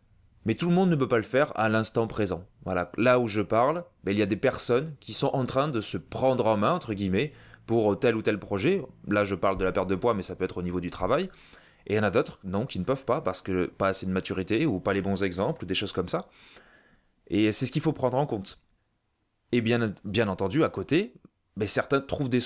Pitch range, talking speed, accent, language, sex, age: 100-130 Hz, 260 wpm, French, French, male, 30-49